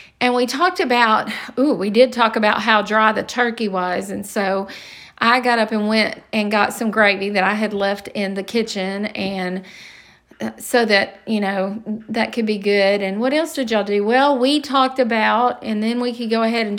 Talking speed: 210 wpm